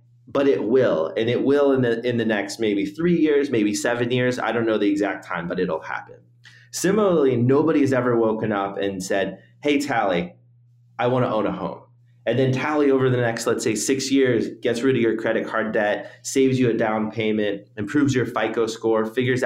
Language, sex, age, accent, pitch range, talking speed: English, male, 30-49, American, 105-130 Hz, 215 wpm